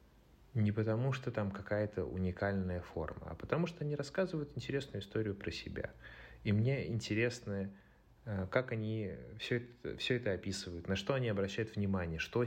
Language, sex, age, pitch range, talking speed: Russian, male, 30-49, 90-115 Hz, 150 wpm